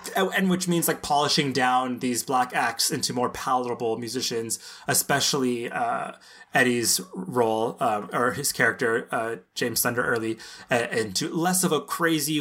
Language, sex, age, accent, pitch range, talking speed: English, male, 20-39, American, 125-145 Hz, 150 wpm